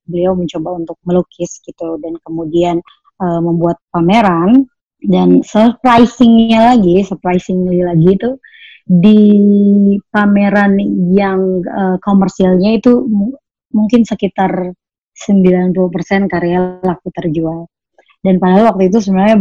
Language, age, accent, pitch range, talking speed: Indonesian, 20-39, native, 175-205 Hz, 100 wpm